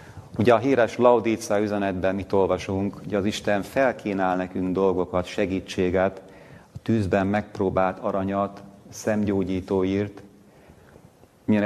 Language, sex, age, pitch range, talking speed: Hungarian, male, 40-59, 95-105 Hz, 110 wpm